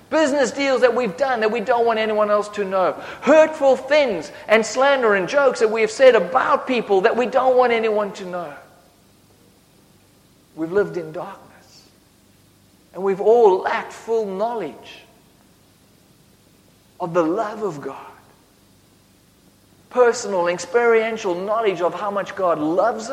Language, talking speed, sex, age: English, 145 wpm, male, 50-69